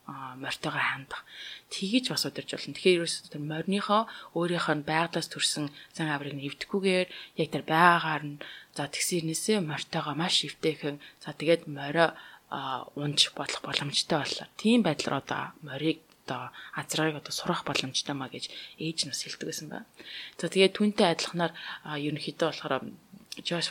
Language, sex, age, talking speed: English, female, 20-39, 50 wpm